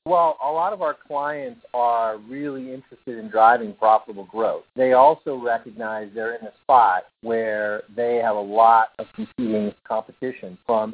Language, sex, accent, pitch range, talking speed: English, male, American, 110-140 Hz, 160 wpm